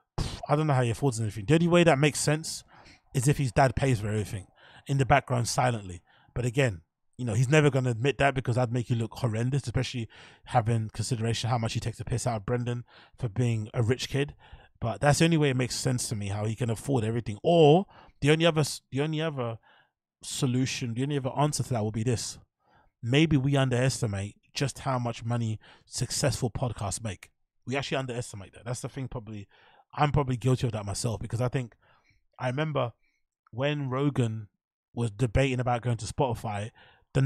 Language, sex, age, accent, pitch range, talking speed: English, male, 20-39, British, 115-140 Hz, 200 wpm